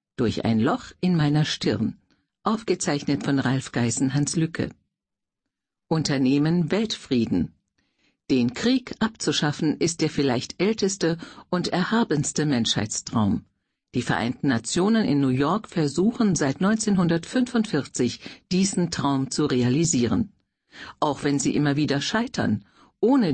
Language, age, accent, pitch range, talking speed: German, 50-69, German, 140-195 Hz, 115 wpm